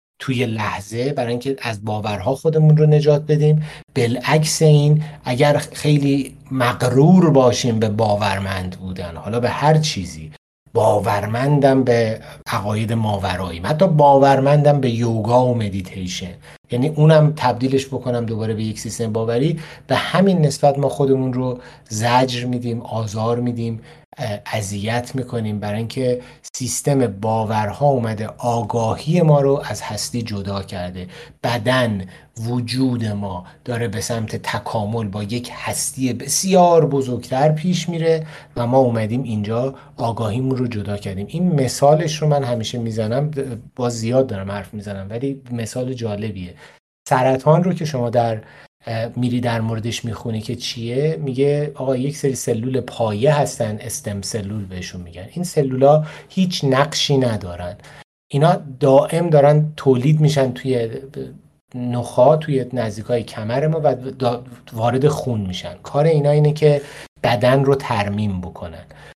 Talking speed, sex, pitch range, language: 130 wpm, male, 110-145 Hz, Persian